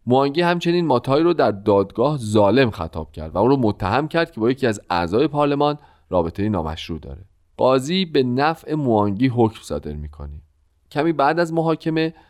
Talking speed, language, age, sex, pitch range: 165 wpm, Persian, 40-59, male, 90-150 Hz